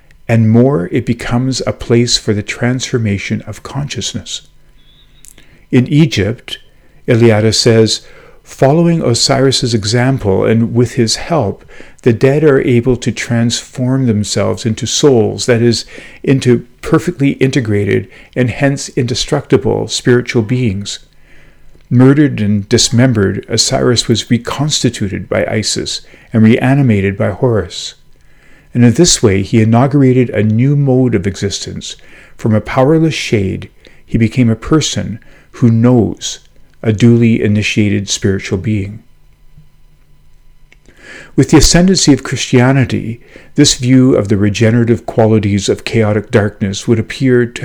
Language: English